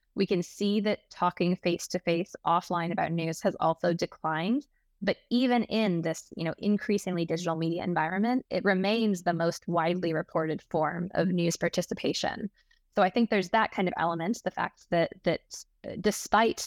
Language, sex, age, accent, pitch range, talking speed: English, female, 20-39, American, 170-205 Hz, 160 wpm